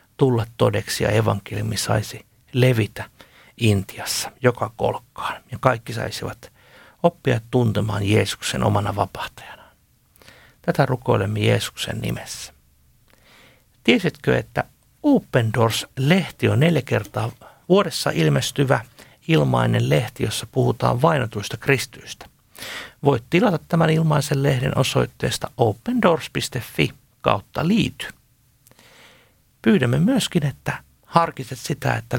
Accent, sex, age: native, male, 60-79